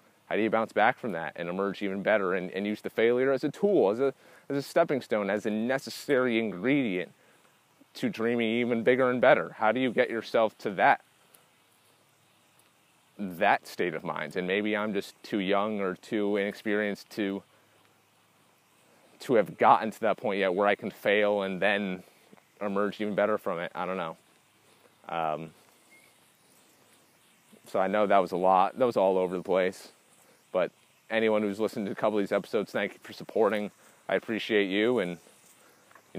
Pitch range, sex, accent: 95-115 Hz, male, American